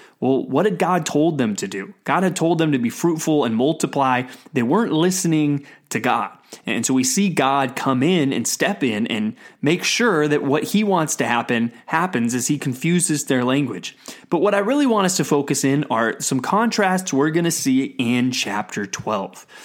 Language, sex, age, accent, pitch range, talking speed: English, male, 20-39, American, 130-180 Hz, 200 wpm